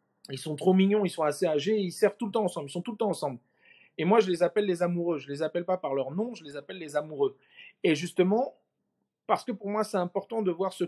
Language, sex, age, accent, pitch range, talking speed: French, male, 40-59, French, 165-210 Hz, 280 wpm